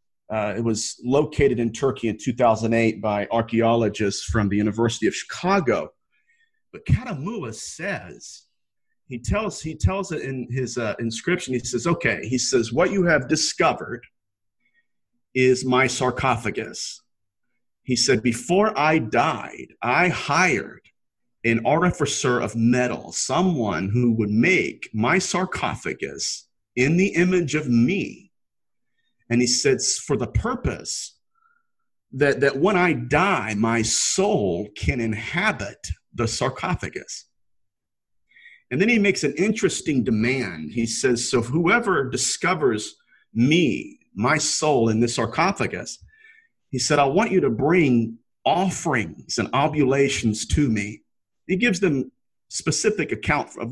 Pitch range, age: 115-170 Hz, 40-59